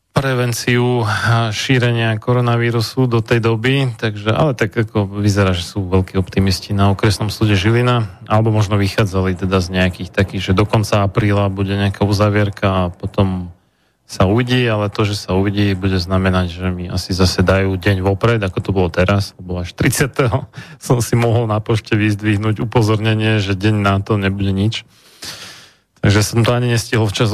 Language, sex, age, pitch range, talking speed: Slovak, male, 30-49, 100-120 Hz, 170 wpm